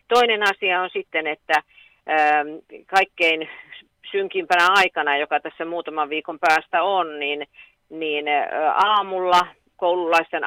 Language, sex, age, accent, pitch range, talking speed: Finnish, female, 50-69, native, 145-175 Hz, 95 wpm